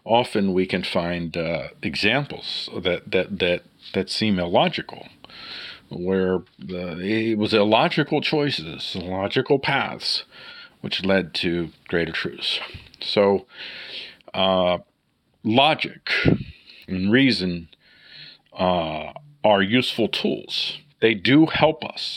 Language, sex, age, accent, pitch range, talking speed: English, male, 50-69, American, 100-170 Hz, 105 wpm